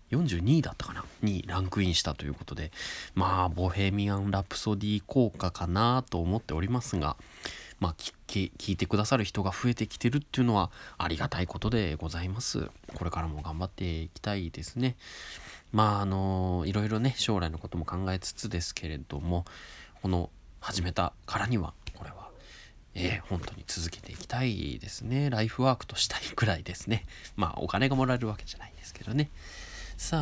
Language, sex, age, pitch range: Japanese, male, 20-39, 80-115 Hz